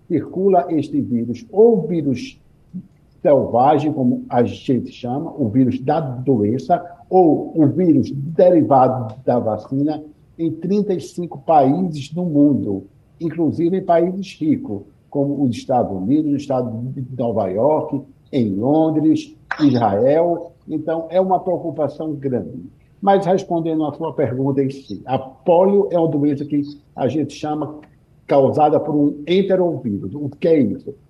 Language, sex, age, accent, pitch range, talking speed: Portuguese, male, 60-79, Brazilian, 135-175 Hz, 135 wpm